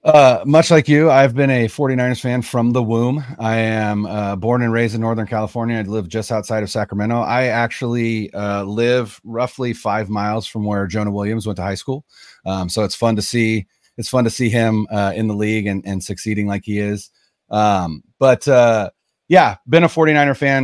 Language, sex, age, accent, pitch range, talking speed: English, male, 30-49, American, 100-125 Hz, 205 wpm